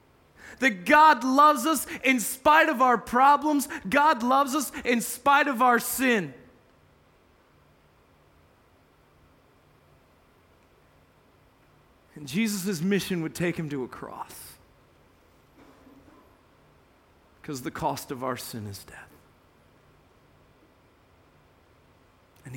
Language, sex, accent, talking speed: English, male, American, 95 wpm